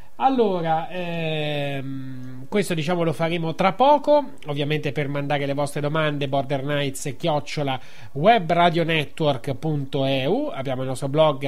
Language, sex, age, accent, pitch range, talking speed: Italian, male, 30-49, native, 130-160 Hz, 110 wpm